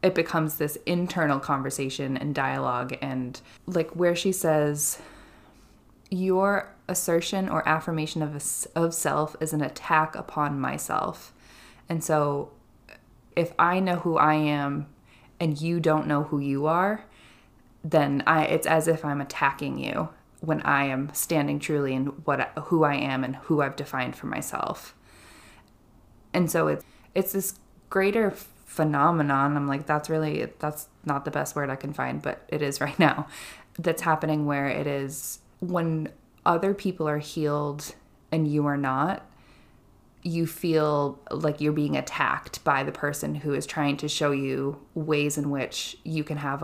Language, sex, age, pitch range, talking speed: English, female, 20-39, 140-160 Hz, 160 wpm